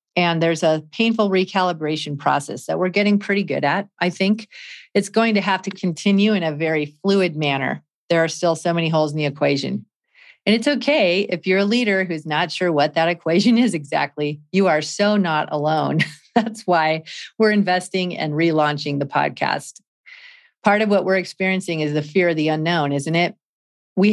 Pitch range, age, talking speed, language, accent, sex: 155-205 Hz, 40-59, 190 wpm, English, American, female